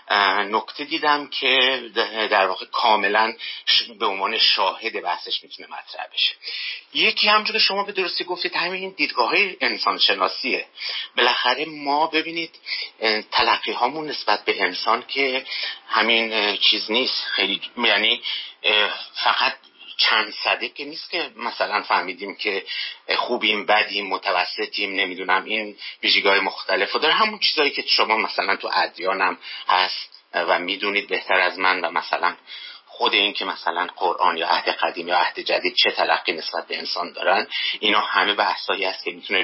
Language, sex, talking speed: Persian, male, 140 wpm